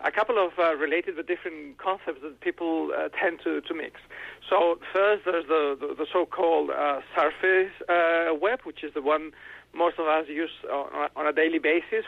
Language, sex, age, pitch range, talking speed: English, male, 40-59, 150-180 Hz, 200 wpm